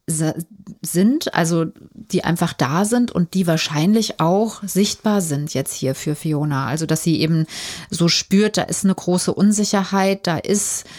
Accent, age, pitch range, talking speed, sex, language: German, 30-49, 170-205 Hz, 160 wpm, female, German